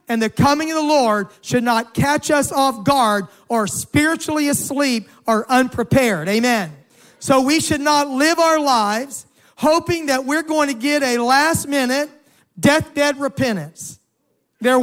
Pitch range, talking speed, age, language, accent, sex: 230-295 Hz, 155 wpm, 40-59, English, American, male